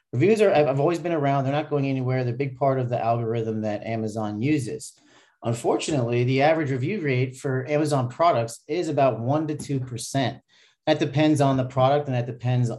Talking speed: 190 wpm